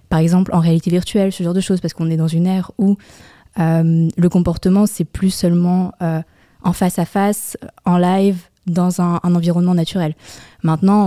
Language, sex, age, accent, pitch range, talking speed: French, female, 20-39, French, 170-195 Hz, 190 wpm